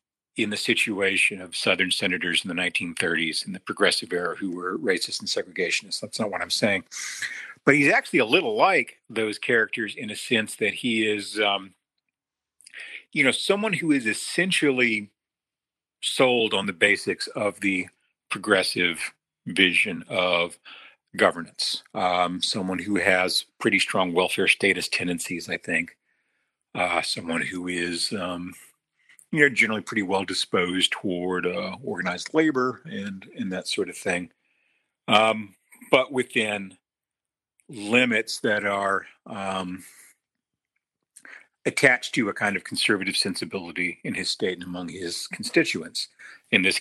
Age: 40-59